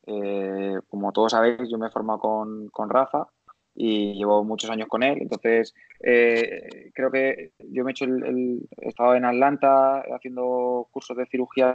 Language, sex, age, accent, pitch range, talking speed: Spanish, male, 20-39, Spanish, 115-130 Hz, 180 wpm